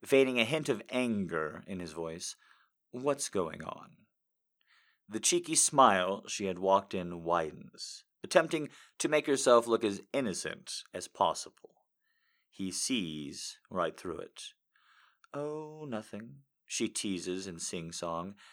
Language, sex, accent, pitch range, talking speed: English, male, American, 90-135 Hz, 125 wpm